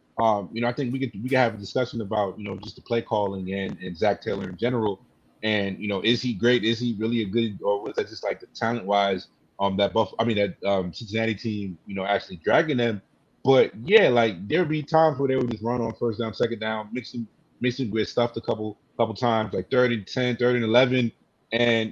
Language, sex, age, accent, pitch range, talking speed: English, male, 30-49, American, 105-125 Hz, 245 wpm